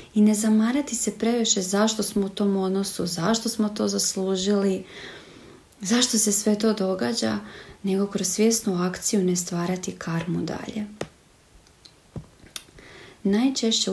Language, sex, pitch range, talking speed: Croatian, female, 180-225 Hz, 120 wpm